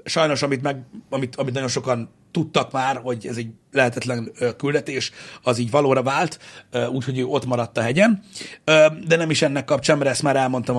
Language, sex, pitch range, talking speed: Hungarian, male, 120-145 Hz, 180 wpm